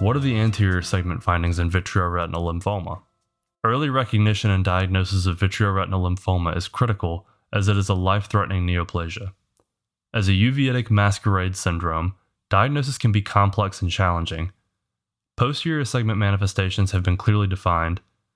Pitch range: 95-110 Hz